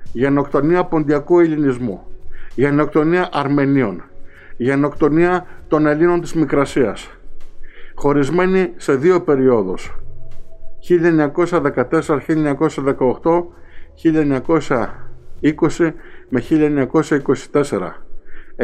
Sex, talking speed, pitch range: male, 50 wpm, 145-180 Hz